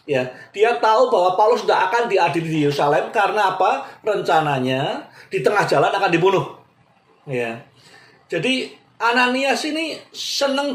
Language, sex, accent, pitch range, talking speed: Indonesian, male, native, 140-220 Hz, 130 wpm